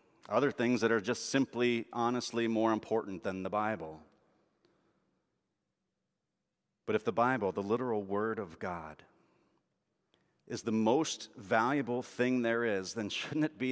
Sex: male